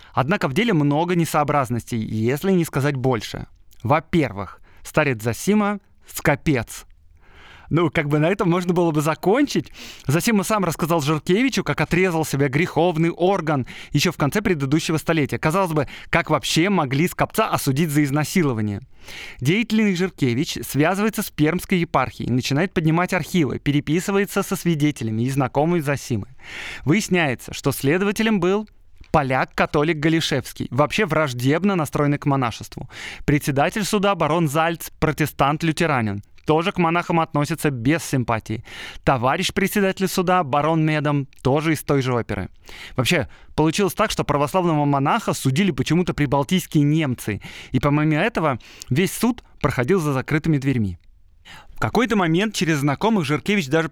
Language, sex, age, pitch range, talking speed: Russian, male, 20-39, 130-175 Hz, 130 wpm